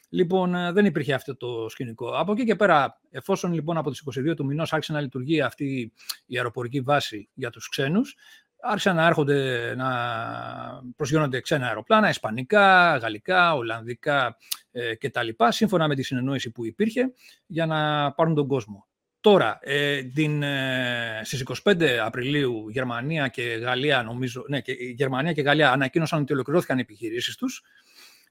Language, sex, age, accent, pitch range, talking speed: Greek, male, 40-59, Spanish, 125-180 Hz, 155 wpm